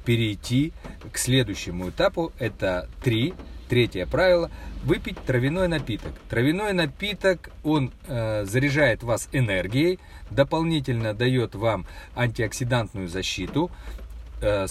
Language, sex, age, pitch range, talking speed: Russian, male, 40-59, 95-140 Hz, 100 wpm